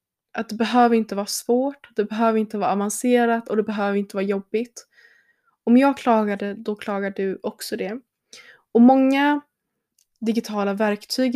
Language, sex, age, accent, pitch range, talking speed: Swedish, female, 20-39, native, 205-245 Hz, 160 wpm